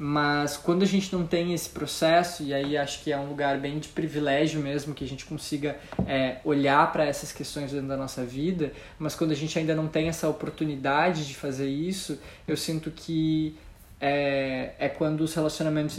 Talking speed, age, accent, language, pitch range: 195 wpm, 20-39, Brazilian, Portuguese, 145-160 Hz